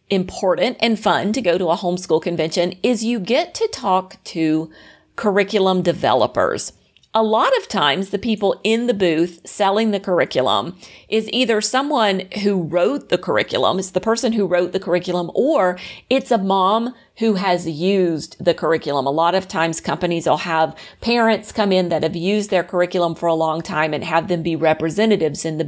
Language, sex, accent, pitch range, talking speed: English, female, American, 170-210 Hz, 180 wpm